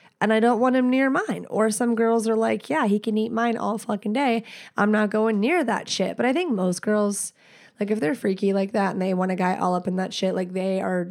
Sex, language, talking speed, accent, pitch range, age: female, English, 270 wpm, American, 195-230 Hz, 20-39